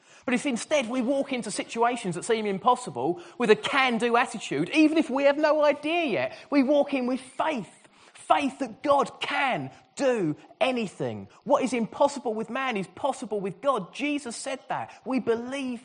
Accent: British